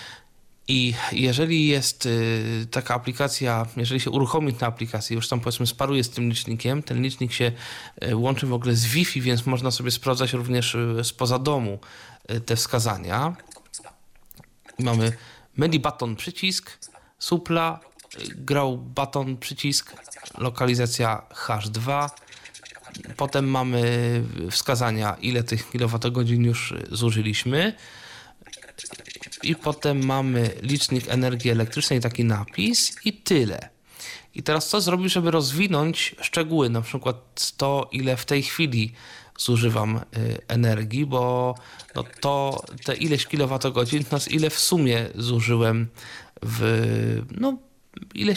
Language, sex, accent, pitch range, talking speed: Polish, male, native, 115-140 Hz, 115 wpm